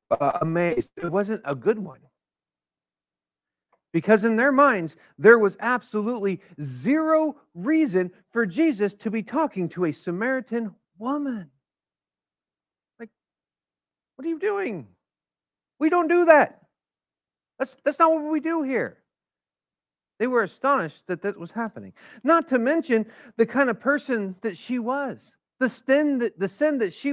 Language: English